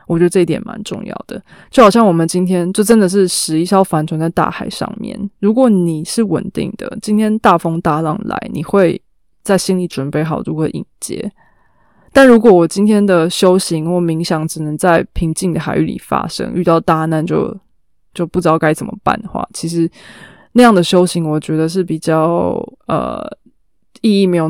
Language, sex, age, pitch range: Chinese, female, 20-39, 165-210 Hz